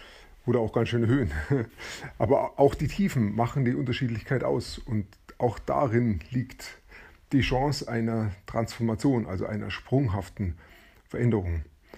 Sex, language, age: male, German, 30-49